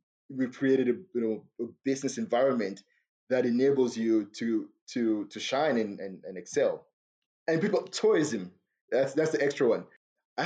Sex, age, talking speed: male, 20-39, 160 wpm